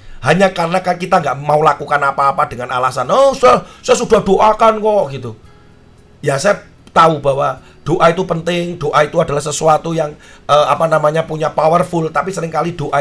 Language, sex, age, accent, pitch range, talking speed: Indonesian, male, 40-59, native, 130-180 Hz, 170 wpm